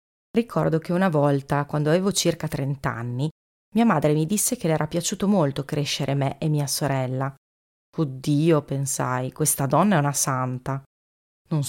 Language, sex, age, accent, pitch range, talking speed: Italian, female, 30-49, native, 140-175 Hz, 160 wpm